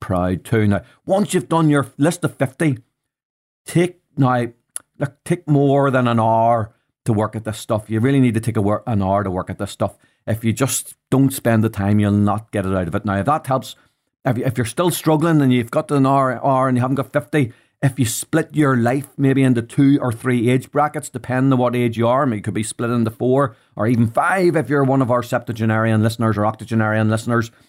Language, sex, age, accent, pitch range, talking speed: English, male, 40-59, Irish, 110-140 Hz, 235 wpm